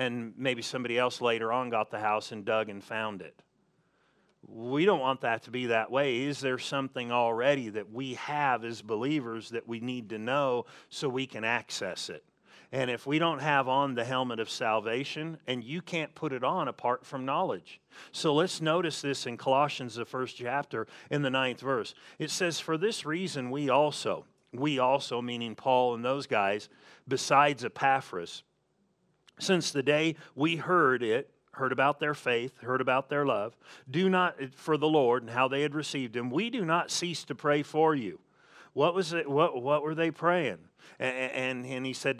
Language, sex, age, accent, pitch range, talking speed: English, male, 40-59, American, 120-155 Hz, 190 wpm